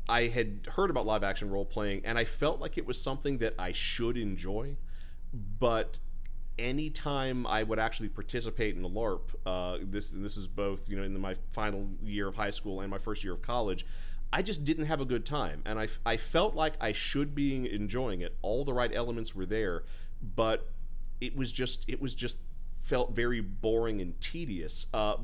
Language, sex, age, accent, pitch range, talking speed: English, male, 30-49, American, 90-115 Hz, 205 wpm